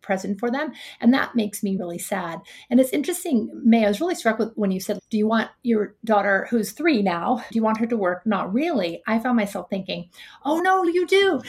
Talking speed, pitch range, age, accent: 235 wpm, 195-240 Hz, 30-49, American